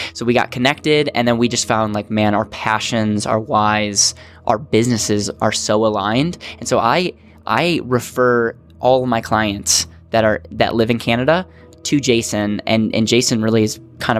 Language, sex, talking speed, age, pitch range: English, male, 180 wpm, 10-29, 105-120 Hz